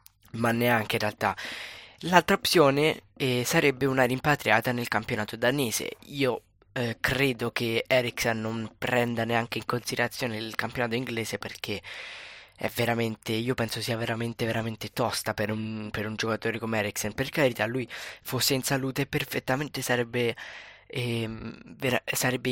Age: 20-39